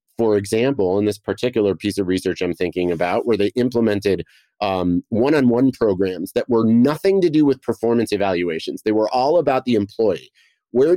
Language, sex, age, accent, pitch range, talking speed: English, male, 30-49, American, 105-140 Hz, 175 wpm